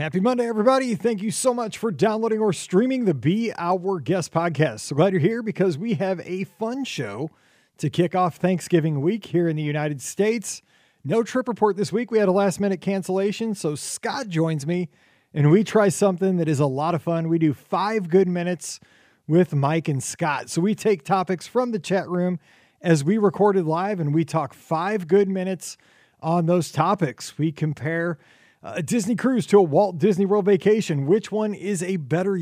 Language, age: English, 40-59